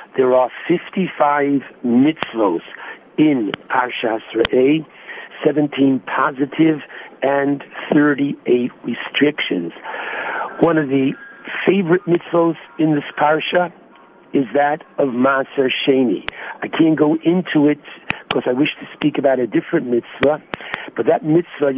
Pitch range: 135-170 Hz